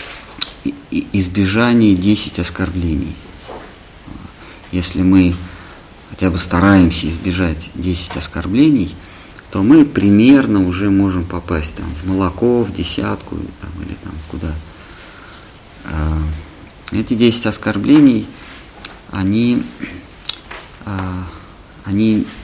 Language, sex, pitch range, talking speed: Russian, male, 90-100 Hz, 85 wpm